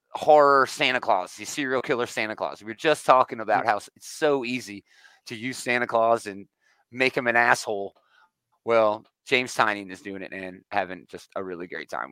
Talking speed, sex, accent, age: 195 wpm, male, American, 30-49